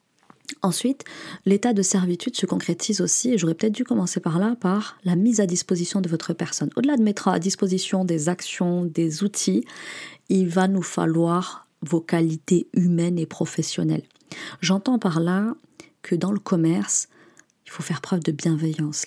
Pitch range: 170-195 Hz